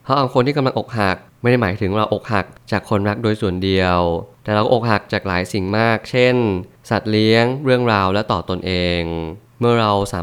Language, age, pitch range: Thai, 20-39, 95-115 Hz